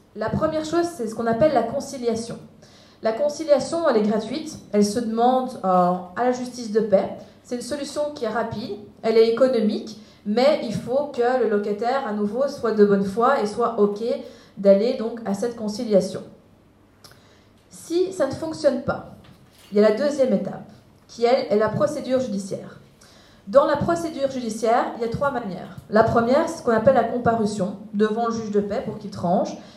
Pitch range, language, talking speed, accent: 200-250 Hz, French, 190 wpm, French